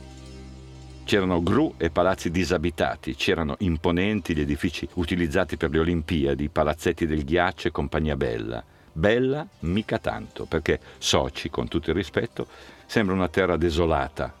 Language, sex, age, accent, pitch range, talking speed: Italian, male, 50-69, native, 75-90 Hz, 135 wpm